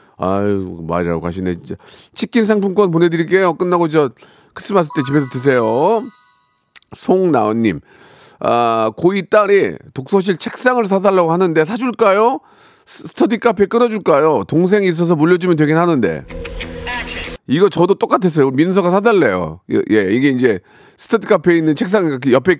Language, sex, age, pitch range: Korean, male, 40-59, 130-190 Hz